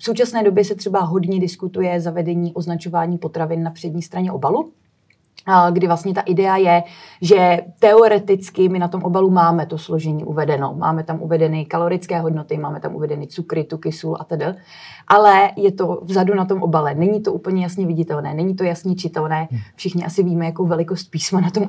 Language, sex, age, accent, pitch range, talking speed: Czech, female, 30-49, native, 165-190 Hz, 185 wpm